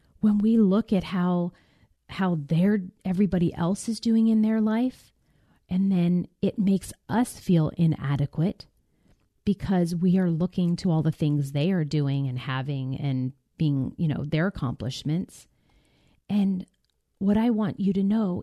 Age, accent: 40-59, American